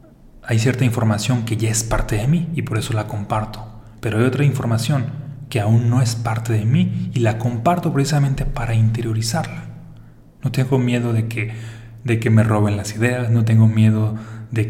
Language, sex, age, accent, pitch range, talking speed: Spanish, male, 30-49, Mexican, 110-120 Hz, 190 wpm